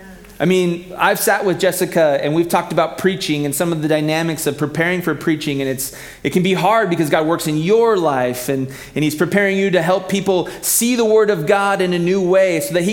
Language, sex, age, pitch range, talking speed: English, male, 30-49, 125-175 Hz, 240 wpm